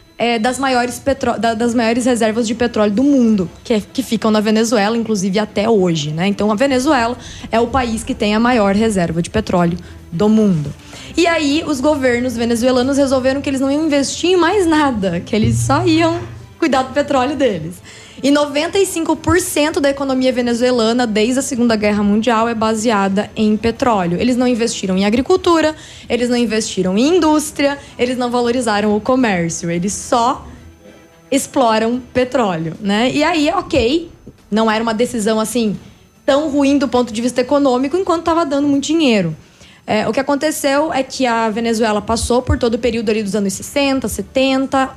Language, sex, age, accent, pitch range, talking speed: Portuguese, female, 20-39, Brazilian, 225-280 Hz, 175 wpm